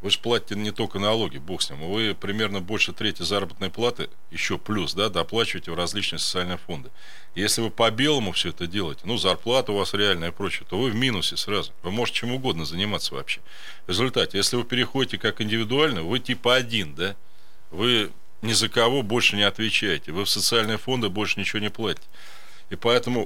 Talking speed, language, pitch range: 190 wpm, Russian, 100-125 Hz